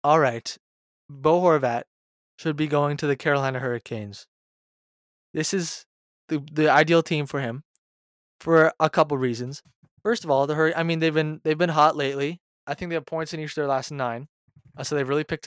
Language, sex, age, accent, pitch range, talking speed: English, male, 20-39, American, 135-165 Hz, 200 wpm